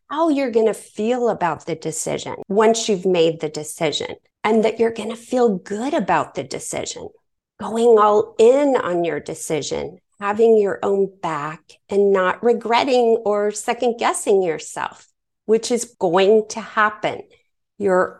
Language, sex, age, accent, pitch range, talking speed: English, female, 40-59, American, 170-235 Hz, 150 wpm